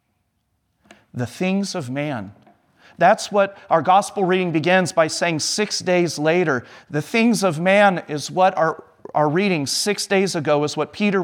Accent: American